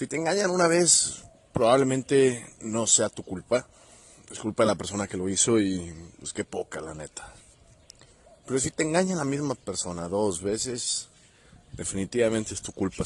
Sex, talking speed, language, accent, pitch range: male, 175 wpm, Spanish, Mexican, 90-115 Hz